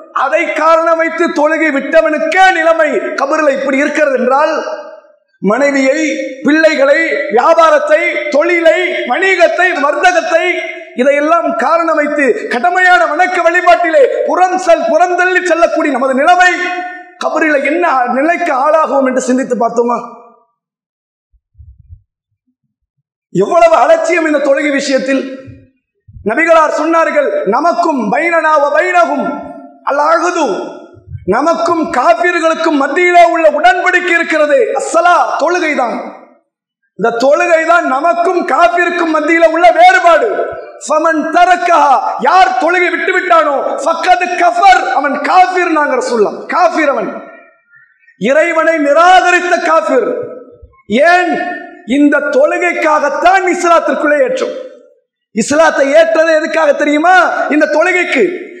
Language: English